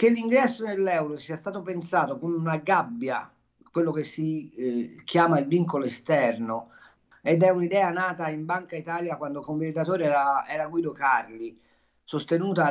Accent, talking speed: native, 150 wpm